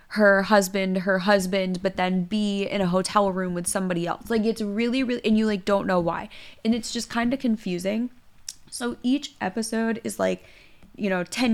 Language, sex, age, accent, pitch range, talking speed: English, female, 20-39, American, 180-215 Hz, 200 wpm